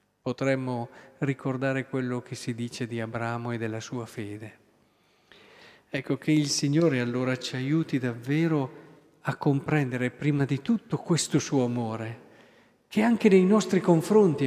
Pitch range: 130-175 Hz